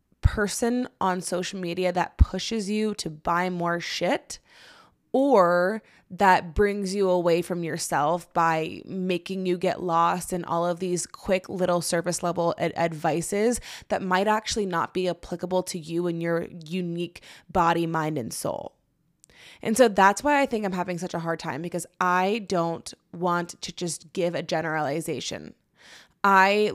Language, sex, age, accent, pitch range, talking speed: English, female, 20-39, American, 170-195 Hz, 155 wpm